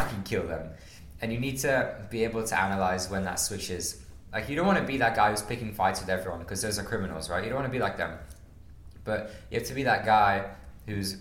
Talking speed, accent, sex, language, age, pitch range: 250 wpm, British, male, English, 20-39, 90-110 Hz